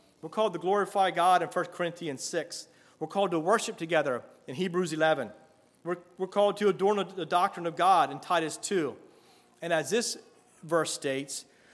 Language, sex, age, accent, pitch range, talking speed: English, male, 40-59, American, 135-175 Hz, 175 wpm